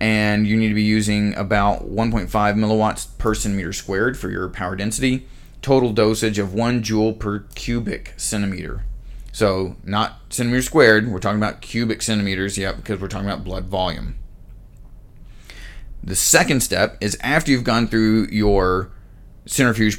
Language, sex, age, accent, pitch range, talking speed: English, male, 30-49, American, 100-115 Hz, 150 wpm